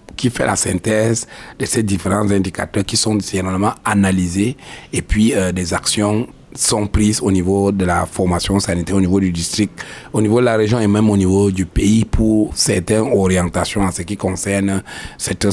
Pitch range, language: 95-115 Hz, French